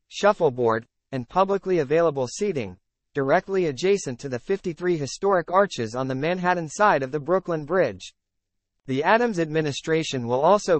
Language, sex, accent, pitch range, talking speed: English, male, American, 130-185 Hz, 140 wpm